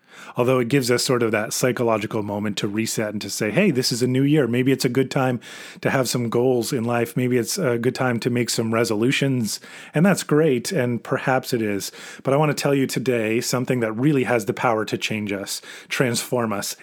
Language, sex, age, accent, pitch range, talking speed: English, male, 30-49, American, 115-145 Hz, 230 wpm